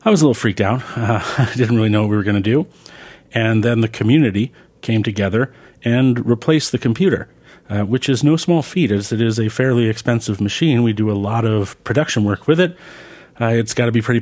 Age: 40-59